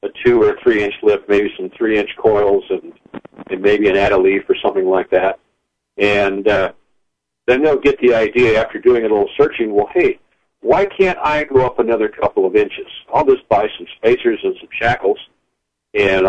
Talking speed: 185 wpm